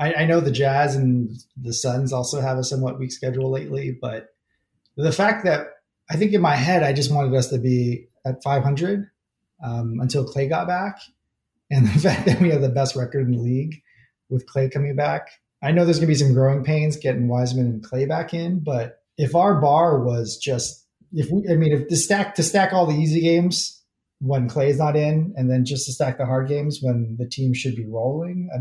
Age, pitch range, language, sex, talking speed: 30-49, 125-150 Hz, English, male, 220 wpm